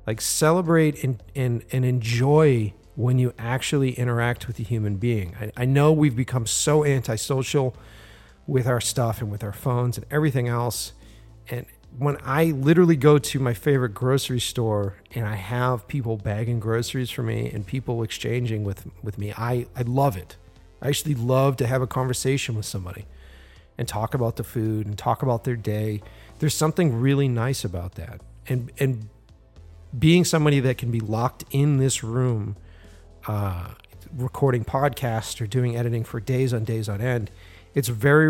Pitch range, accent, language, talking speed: 105-135 Hz, American, English, 170 wpm